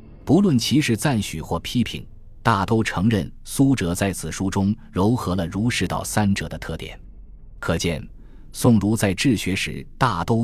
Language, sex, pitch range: Chinese, male, 90-110 Hz